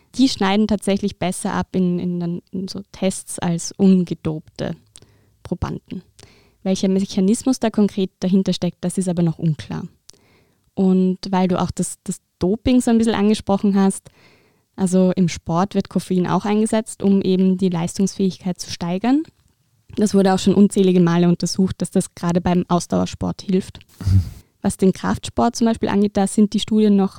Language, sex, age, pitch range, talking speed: German, female, 20-39, 180-205 Hz, 160 wpm